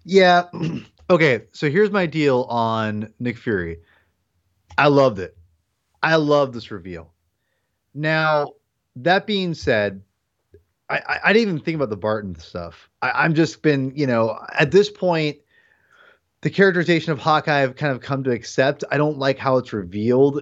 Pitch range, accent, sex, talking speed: 110-160 Hz, American, male, 160 wpm